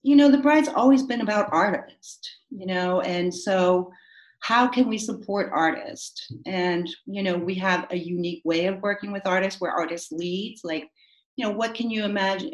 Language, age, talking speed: English, 40-59, 185 wpm